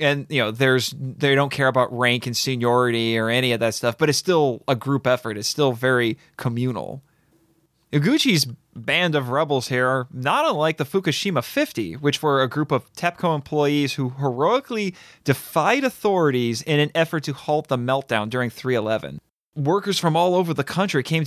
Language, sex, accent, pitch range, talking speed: English, male, American, 130-160 Hz, 180 wpm